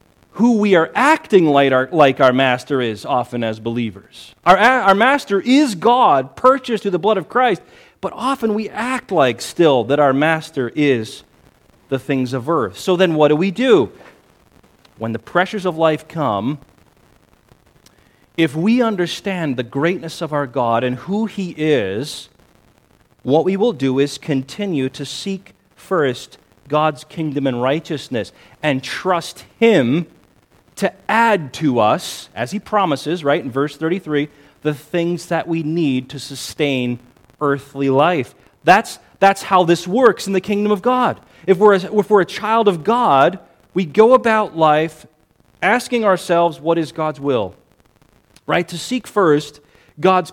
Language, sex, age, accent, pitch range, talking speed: English, male, 40-59, American, 145-210 Hz, 155 wpm